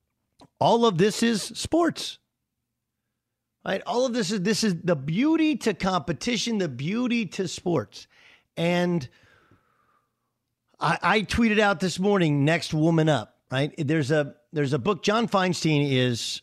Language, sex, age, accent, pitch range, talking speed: English, male, 50-69, American, 115-175 Hz, 140 wpm